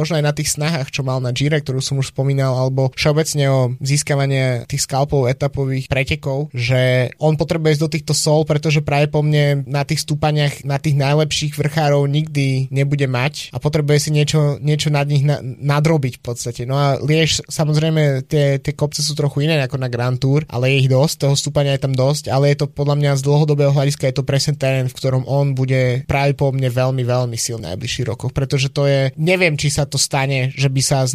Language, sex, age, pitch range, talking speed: Slovak, male, 20-39, 130-145 Hz, 220 wpm